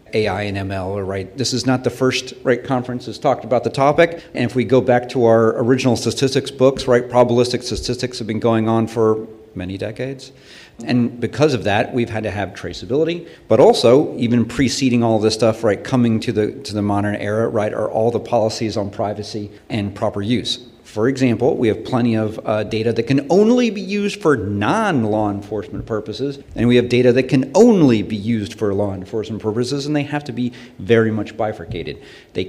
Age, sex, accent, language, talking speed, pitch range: 40-59, male, American, English, 205 wpm, 105-125 Hz